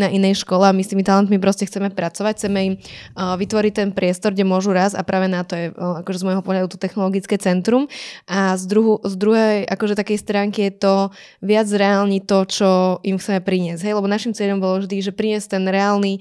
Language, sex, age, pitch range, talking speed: Slovak, female, 20-39, 185-205 Hz, 220 wpm